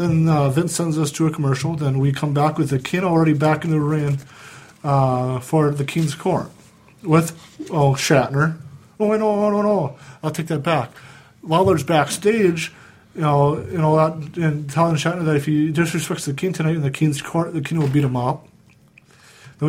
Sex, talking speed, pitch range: male, 200 wpm, 140-160 Hz